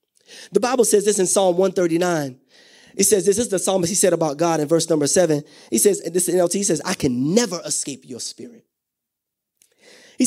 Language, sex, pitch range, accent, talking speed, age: English, male, 145-210 Hz, American, 210 wpm, 30-49